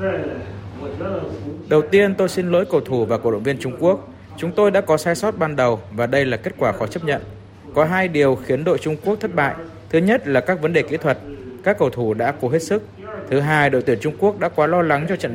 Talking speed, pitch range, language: 255 wpm, 120-160 Hz, Vietnamese